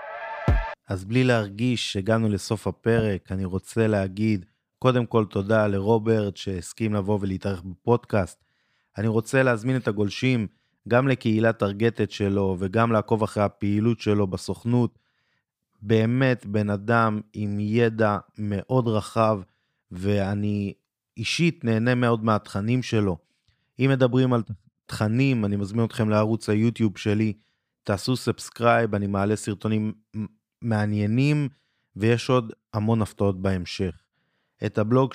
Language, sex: Hebrew, male